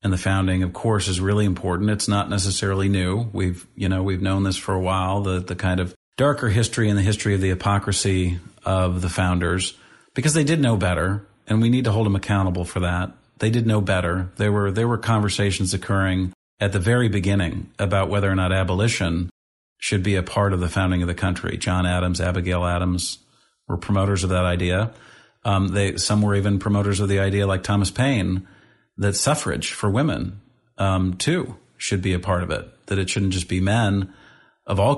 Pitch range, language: 95-115 Hz, English